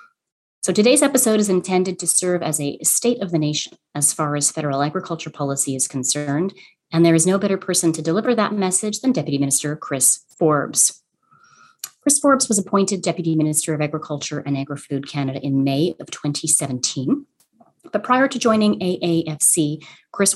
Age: 30-49